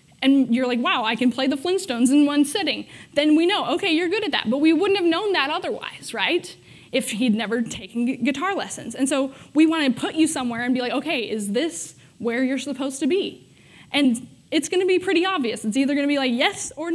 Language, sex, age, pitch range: English, female, 20-39, 225-285 Hz